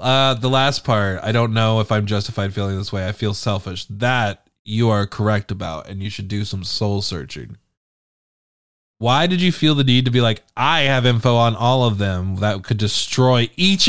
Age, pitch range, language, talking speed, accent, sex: 20-39, 100-125 Hz, English, 205 wpm, American, male